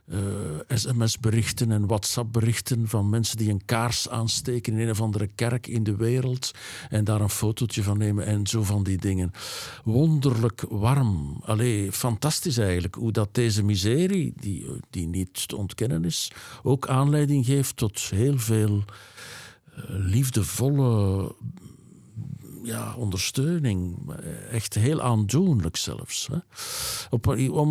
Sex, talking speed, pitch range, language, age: male, 130 wpm, 105-130 Hz, Dutch, 50-69